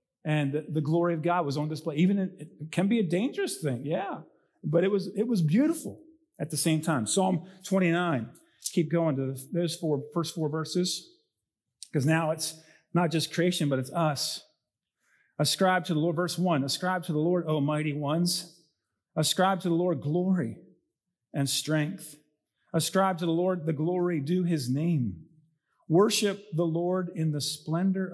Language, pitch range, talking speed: English, 150-190 Hz, 175 wpm